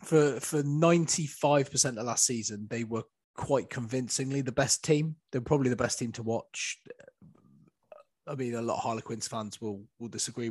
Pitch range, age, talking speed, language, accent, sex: 115-145 Hz, 20-39, 170 wpm, English, British, male